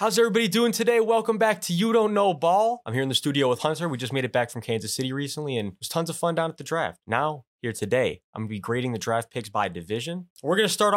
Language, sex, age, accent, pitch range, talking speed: English, male, 20-39, American, 115-180 Hz, 285 wpm